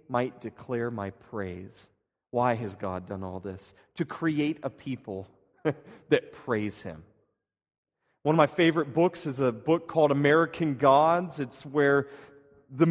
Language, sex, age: English, male, 40-59